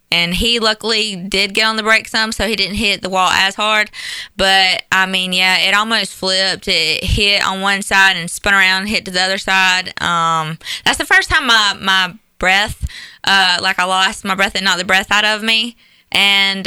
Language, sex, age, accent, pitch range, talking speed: English, female, 20-39, American, 185-210 Hz, 210 wpm